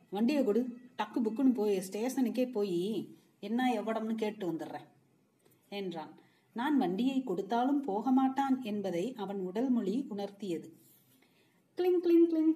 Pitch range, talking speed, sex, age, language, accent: 195-255 Hz, 120 wpm, female, 30-49, Tamil, native